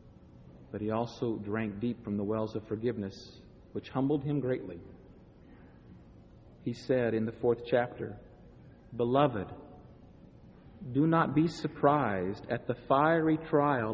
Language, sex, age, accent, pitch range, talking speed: English, male, 50-69, American, 110-160 Hz, 125 wpm